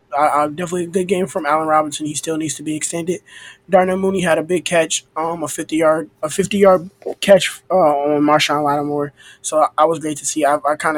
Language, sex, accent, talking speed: English, male, American, 235 wpm